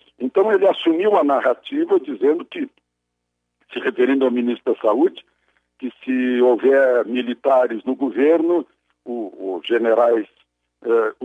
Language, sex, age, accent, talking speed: Portuguese, male, 60-79, Brazilian, 125 wpm